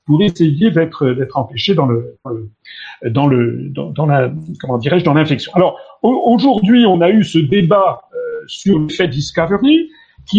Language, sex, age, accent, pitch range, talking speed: French, male, 40-59, French, 145-215 Hz, 160 wpm